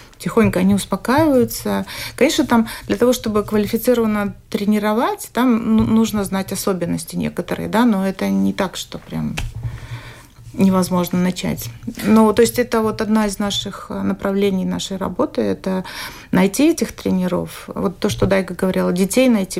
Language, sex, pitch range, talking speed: Russian, female, 190-230 Hz, 145 wpm